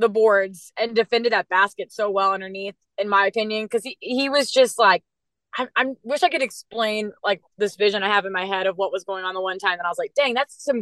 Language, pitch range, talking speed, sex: English, 195-235 Hz, 260 wpm, female